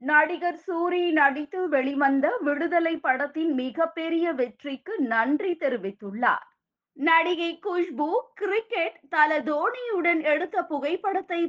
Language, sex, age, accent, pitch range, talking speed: Tamil, female, 20-39, native, 275-335 Hz, 85 wpm